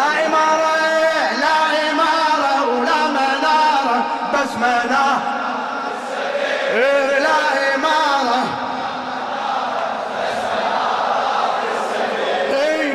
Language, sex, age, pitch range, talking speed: Arabic, male, 30-49, 205-315 Hz, 65 wpm